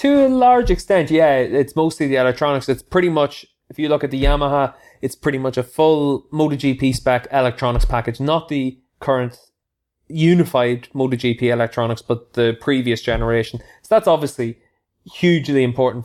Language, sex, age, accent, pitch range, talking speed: English, male, 20-39, Irish, 125-145 Hz, 155 wpm